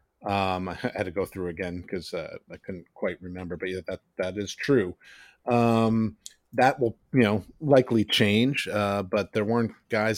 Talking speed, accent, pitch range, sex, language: 185 wpm, American, 95-110 Hz, male, English